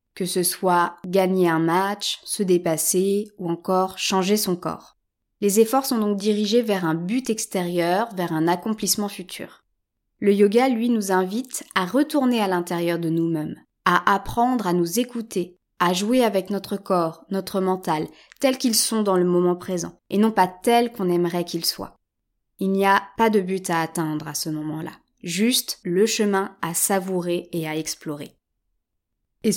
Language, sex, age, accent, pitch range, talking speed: French, female, 20-39, French, 175-225 Hz, 170 wpm